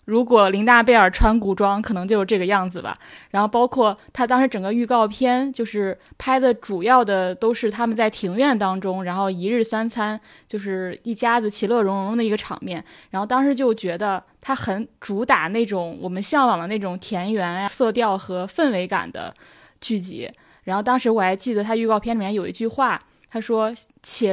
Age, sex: 20-39, female